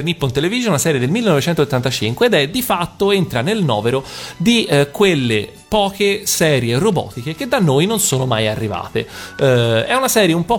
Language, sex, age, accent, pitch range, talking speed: Italian, male, 30-49, native, 120-170 Hz, 180 wpm